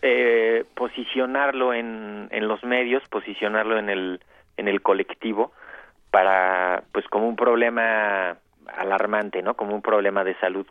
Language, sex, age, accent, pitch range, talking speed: Spanish, male, 40-59, Mexican, 100-130 Hz, 135 wpm